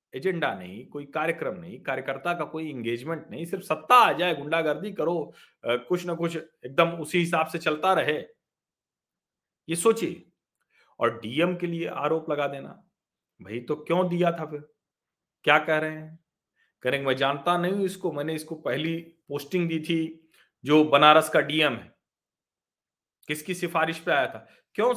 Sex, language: male, Hindi